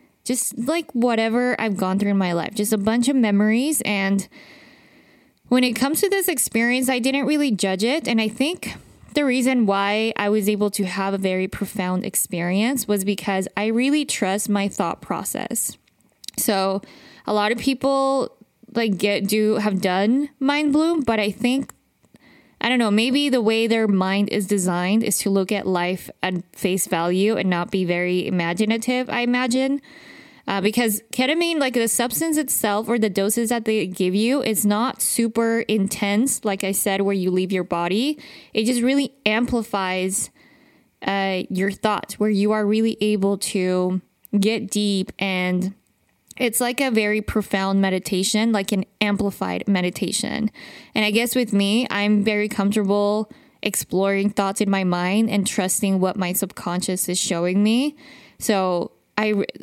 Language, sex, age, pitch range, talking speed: English, female, 20-39, 195-240 Hz, 165 wpm